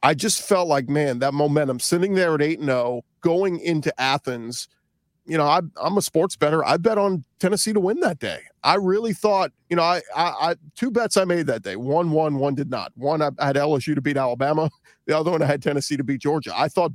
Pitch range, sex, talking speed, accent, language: 135-165 Hz, male, 230 wpm, American, English